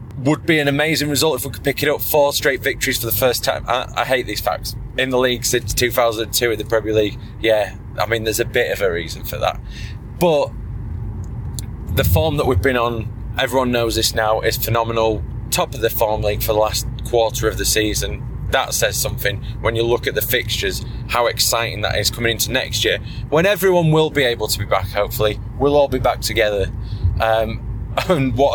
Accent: British